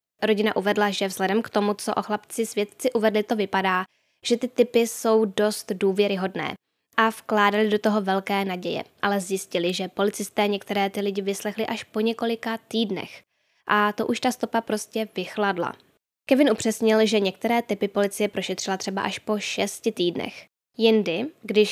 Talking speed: 160 wpm